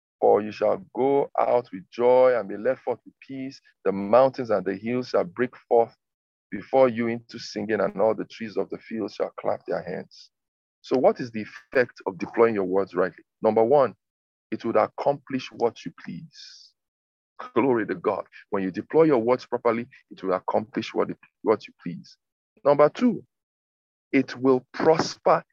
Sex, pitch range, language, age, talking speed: male, 100-135 Hz, English, 50-69, 175 wpm